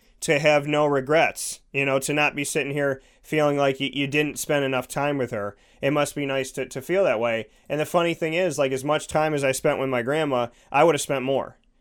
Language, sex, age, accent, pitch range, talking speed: English, male, 30-49, American, 130-150 Hz, 255 wpm